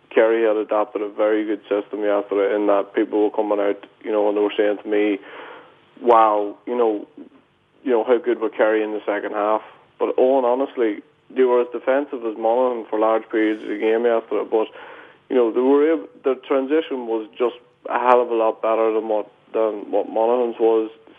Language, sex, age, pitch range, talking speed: English, male, 30-49, 105-120 Hz, 220 wpm